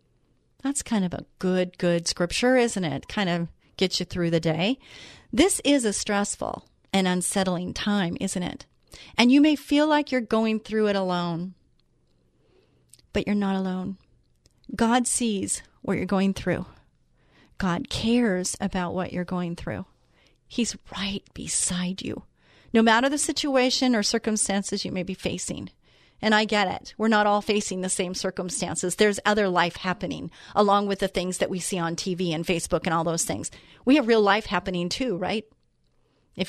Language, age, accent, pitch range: English, 40-59, American, 185-230 Hz